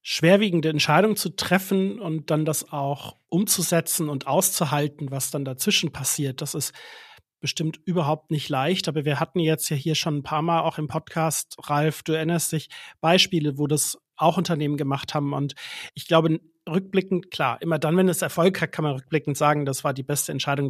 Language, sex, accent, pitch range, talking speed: German, male, German, 140-165 Hz, 190 wpm